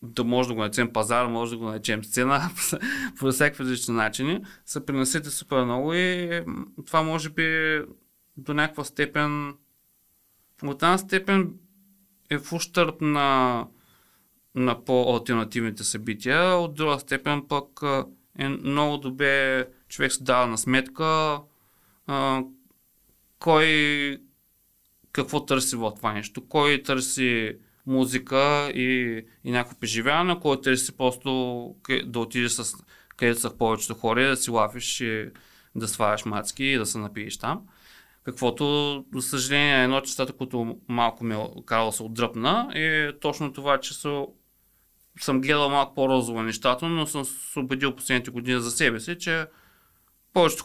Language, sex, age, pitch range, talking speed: Bulgarian, male, 30-49, 120-145 Hz, 140 wpm